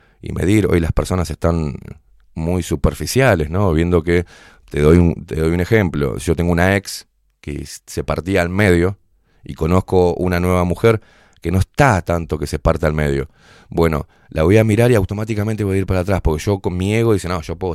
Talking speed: 210 wpm